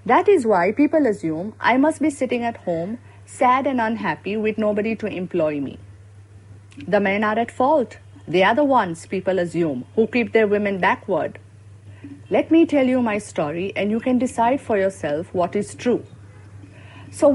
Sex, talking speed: female, 175 wpm